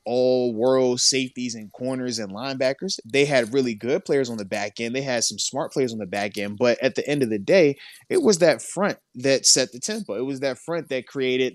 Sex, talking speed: male, 240 wpm